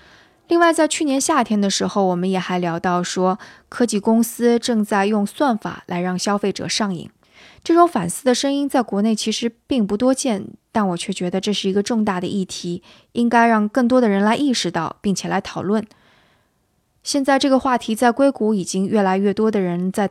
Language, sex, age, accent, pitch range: Chinese, female, 20-39, native, 185-235 Hz